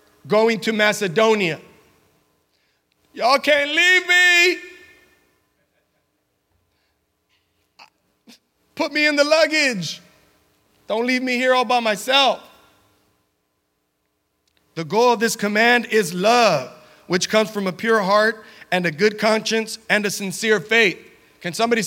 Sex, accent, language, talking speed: male, American, English, 115 wpm